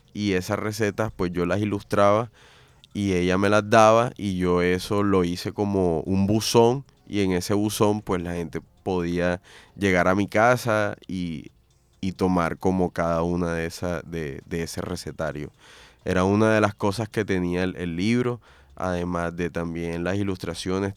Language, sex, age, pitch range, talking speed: Spanish, male, 20-39, 85-105 Hz, 165 wpm